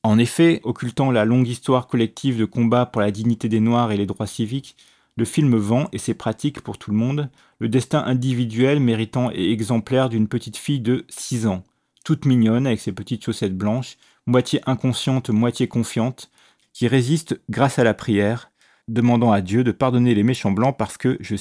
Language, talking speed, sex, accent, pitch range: French, 190 wpm, male, French, 110-125 Hz